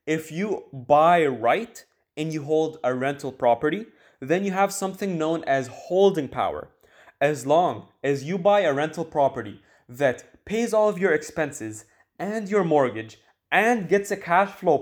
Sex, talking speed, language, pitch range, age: male, 160 wpm, English, 150-195 Hz, 20-39